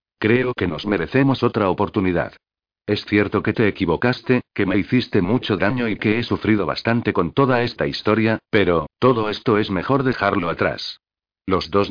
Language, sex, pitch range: Spanish, male, 95-120 Hz